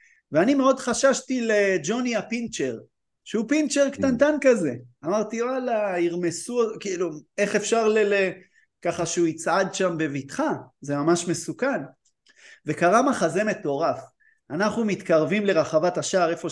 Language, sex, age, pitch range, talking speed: Hebrew, male, 30-49, 165-230 Hz, 115 wpm